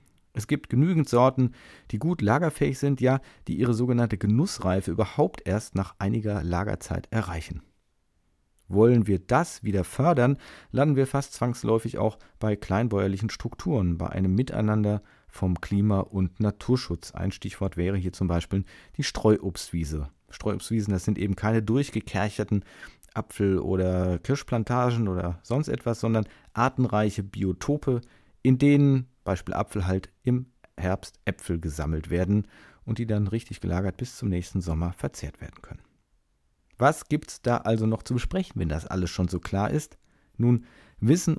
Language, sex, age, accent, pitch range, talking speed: German, male, 40-59, German, 95-125 Hz, 145 wpm